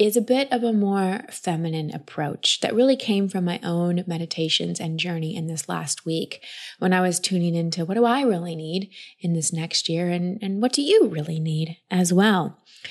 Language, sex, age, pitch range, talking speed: English, female, 20-39, 170-225 Hz, 205 wpm